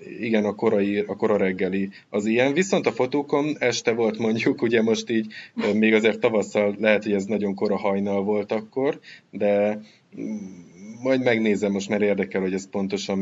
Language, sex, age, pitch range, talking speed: Hungarian, male, 20-39, 95-110 Hz, 165 wpm